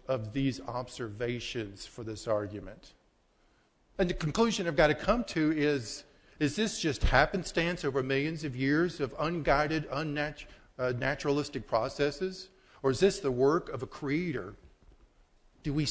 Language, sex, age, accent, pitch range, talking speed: English, male, 40-59, American, 105-140 Hz, 145 wpm